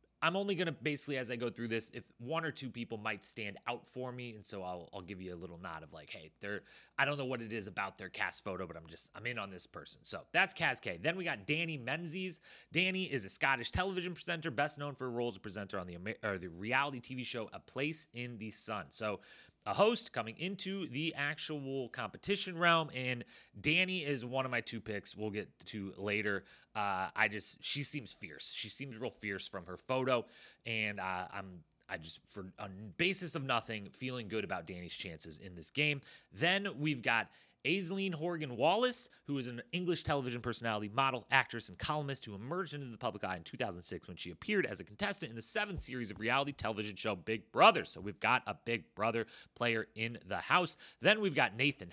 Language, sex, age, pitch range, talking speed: English, male, 30-49, 105-155 Hz, 215 wpm